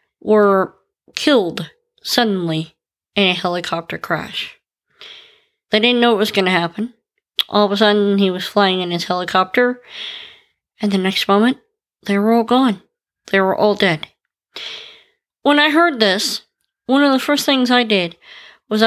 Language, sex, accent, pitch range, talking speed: English, female, American, 195-270 Hz, 155 wpm